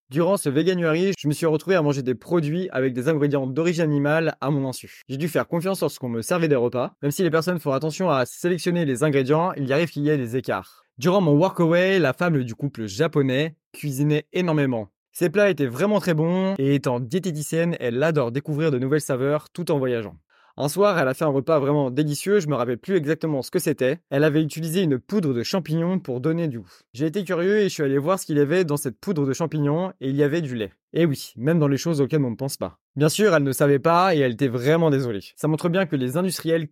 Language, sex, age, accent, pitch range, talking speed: French, male, 20-39, French, 135-170 Hz, 250 wpm